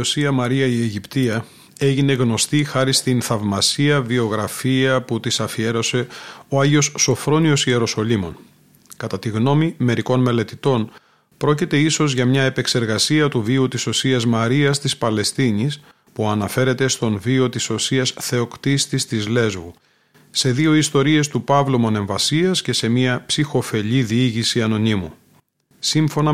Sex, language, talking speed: male, Greek, 130 wpm